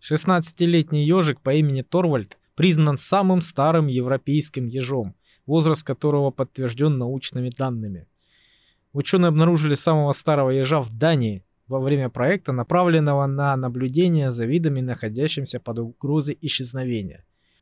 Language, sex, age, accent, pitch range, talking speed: Russian, male, 20-39, native, 120-155 Hz, 115 wpm